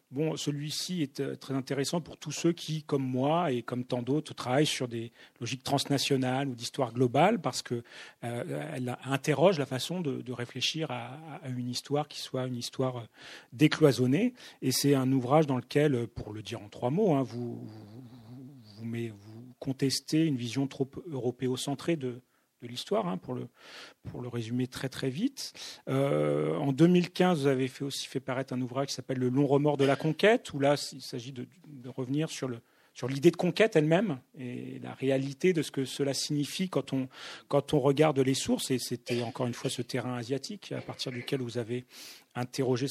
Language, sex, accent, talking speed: French, male, French, 195 wpm